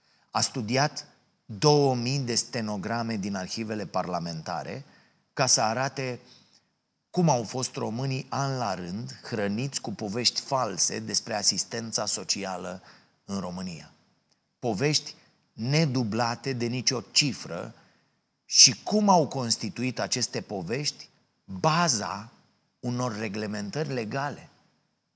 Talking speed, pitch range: 100 wpm, 105-130 Hz